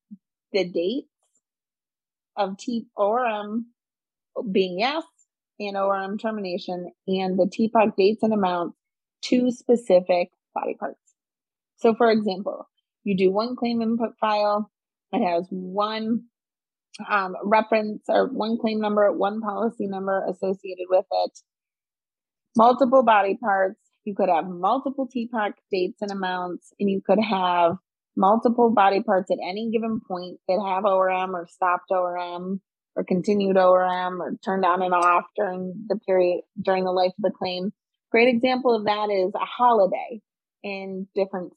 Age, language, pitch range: 30-49, English, 185-225 Hz